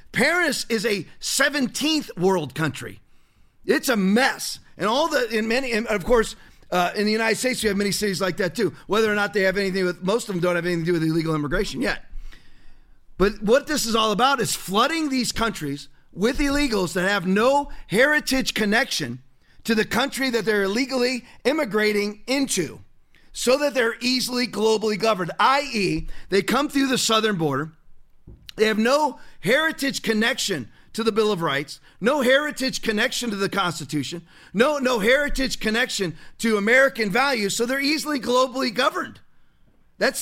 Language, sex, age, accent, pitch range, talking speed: English, male, 40-59, American, 185-255 Hz, 170 wpm